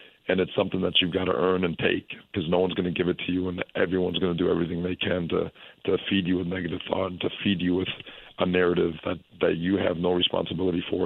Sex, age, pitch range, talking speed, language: male, 40-59, 90-95 Hz, 260 wpm, English